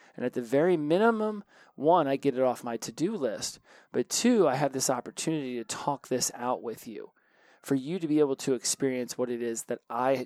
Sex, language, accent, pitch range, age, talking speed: male, English, American, 125-155 Hz, 30-49, 215 wpm